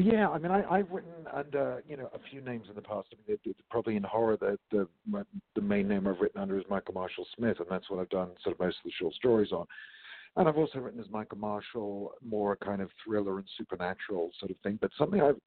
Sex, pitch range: male, 90-115 Hz